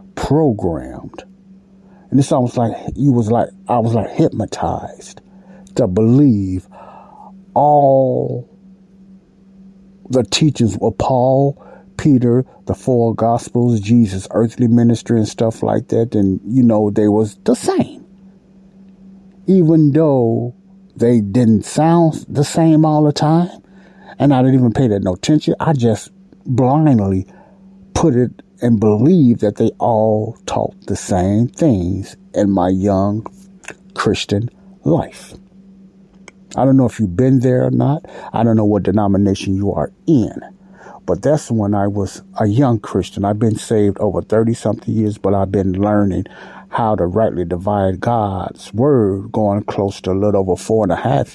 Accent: American